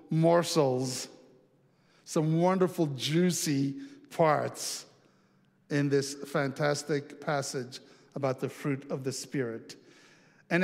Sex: male